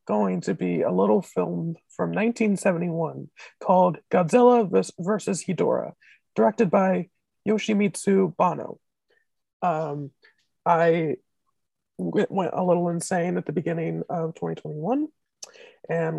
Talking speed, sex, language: 105 wpm, male, English